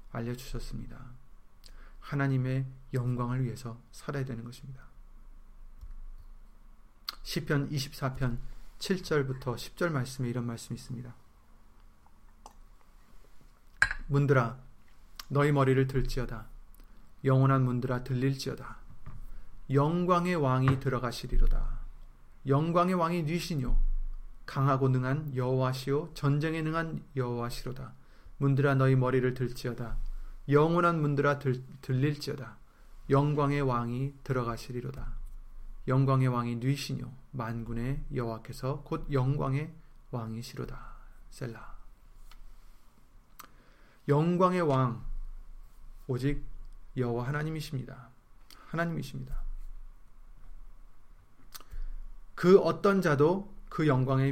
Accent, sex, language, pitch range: native, male, Korean, 120-145 Hz